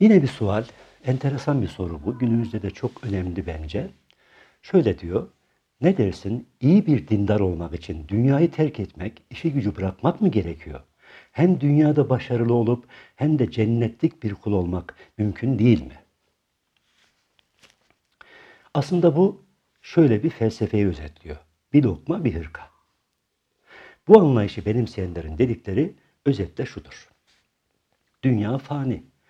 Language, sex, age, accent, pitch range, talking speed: Turkish, male, 60-79, native, 95-140 Hz, 125 wpm